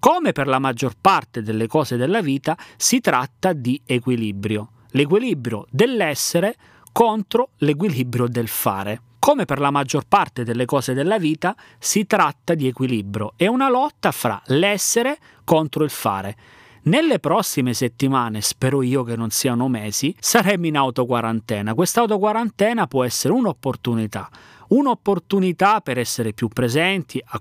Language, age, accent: Italian, 30-49, native